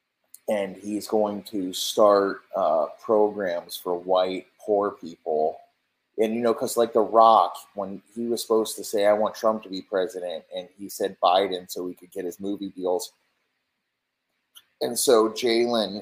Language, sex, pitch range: English, male, 95-110 Hz